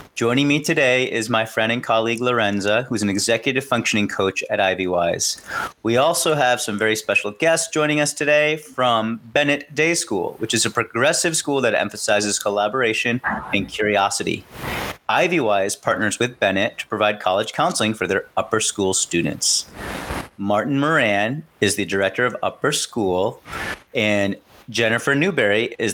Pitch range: 100-130 Hz